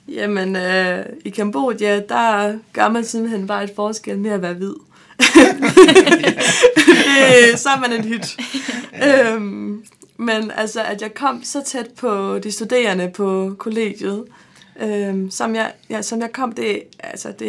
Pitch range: 200-235 Hz